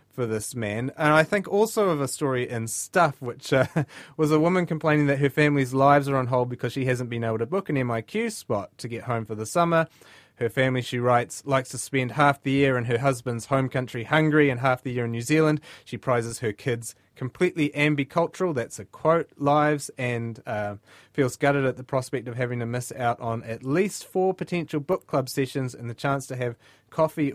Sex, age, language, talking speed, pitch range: male, 30-49, English, 220 wpm, 115-150 Hz